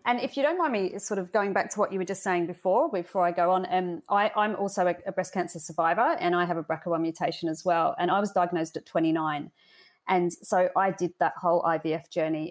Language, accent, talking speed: English, Australian, 250 wpm